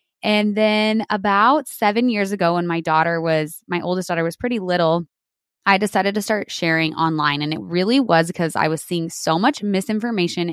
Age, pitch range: 20-39, 165-215 Hz